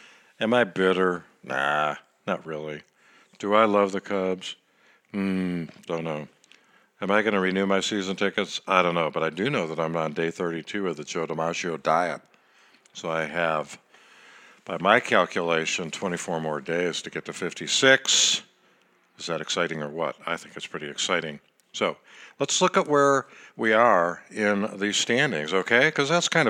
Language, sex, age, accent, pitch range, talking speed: English, male, 60-79, American, 85-105 Hz, 170 wpm